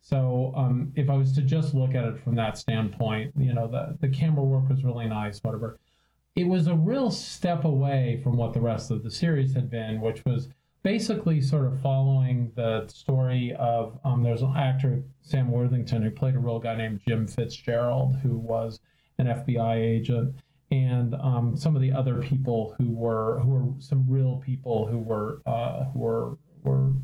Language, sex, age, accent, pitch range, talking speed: English, male, 40-59, American, 115-140 Hz, 190 wpm